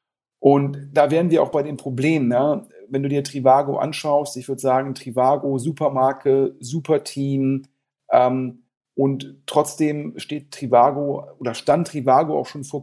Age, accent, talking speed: 40-59, German, 145 wpm